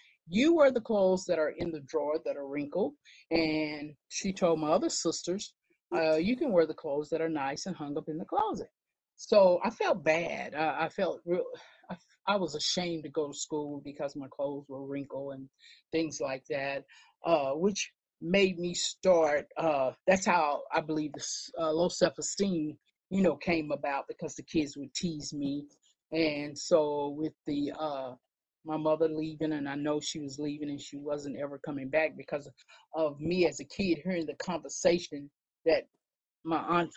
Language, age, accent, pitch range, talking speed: English, 40-59, American, 150-180 Hz, 185 wpm